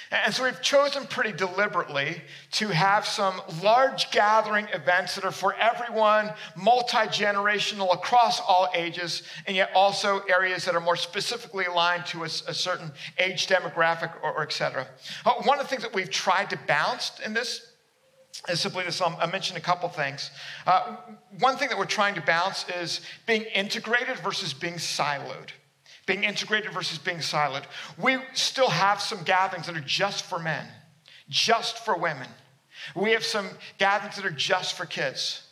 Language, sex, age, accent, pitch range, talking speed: English, male, 50-69, American, 175-220 Hz, 170 wpm